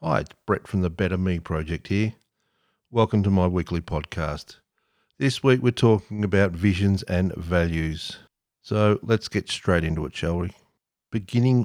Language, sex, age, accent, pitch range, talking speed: English, male, 50-69, Australian, 90-105 Hz, 160 wpm